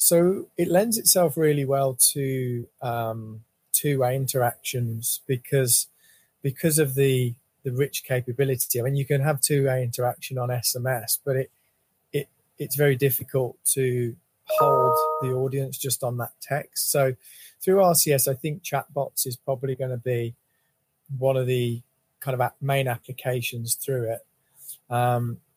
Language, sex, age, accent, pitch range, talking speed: English, male, 30-49, British, 125-145 Hz, 145 wpm